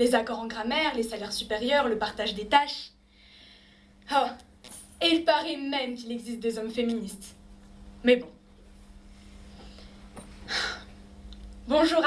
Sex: female